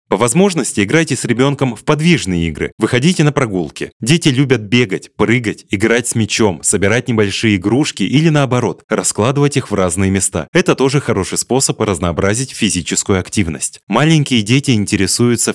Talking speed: 145 wpm